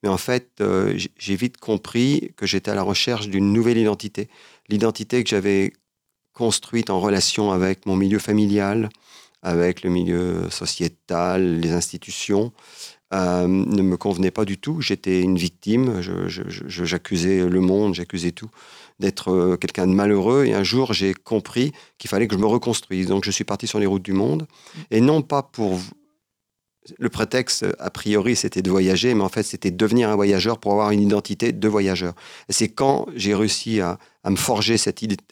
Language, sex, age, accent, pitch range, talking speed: French, male, 40-59, French, 95-110 Hz, 185 wpm